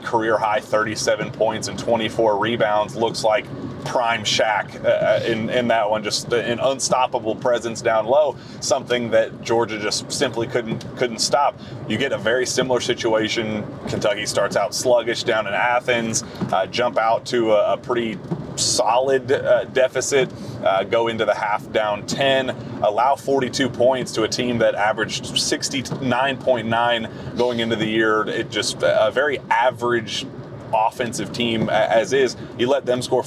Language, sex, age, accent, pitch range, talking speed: English, male, 30-49, American, 115-125 Hz, 155 wpm